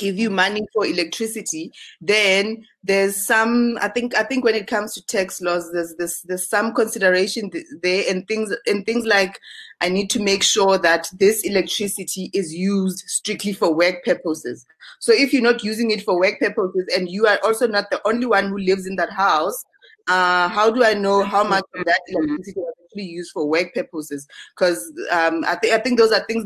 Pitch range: 175-220 Hz